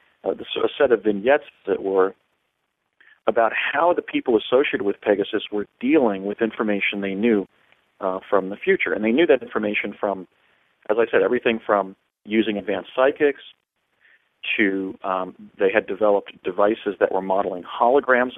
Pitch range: 95-110 Hz